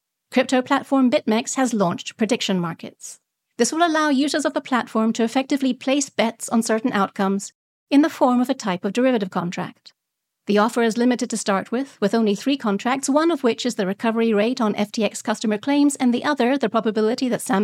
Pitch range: 205-265 Hz